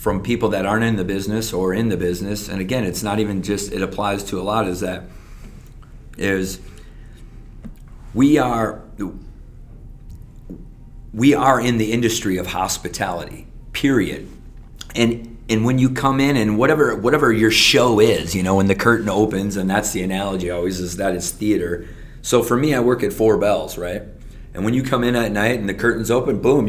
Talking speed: 185 wpm